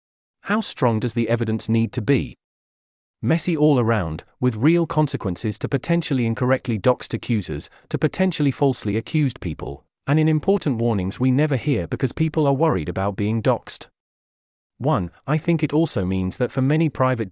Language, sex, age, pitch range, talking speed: English, male, 30-49, 110-140 Hz, 165 wpm